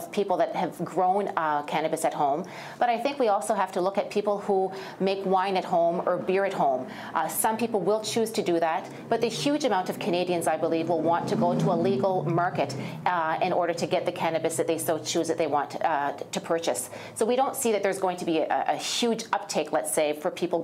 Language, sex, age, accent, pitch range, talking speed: English, female, 40-59, American, 165-195 Hz, 245 wpm